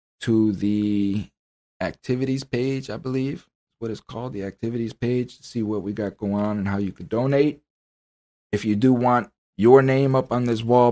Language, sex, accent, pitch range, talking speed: English, male, American, 105-125 Hz, 185 wpm